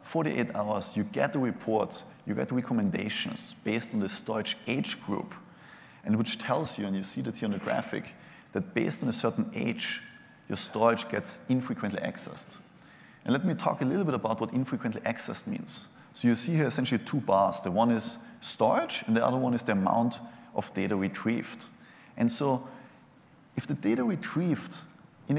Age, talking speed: 30-49, 185 wpm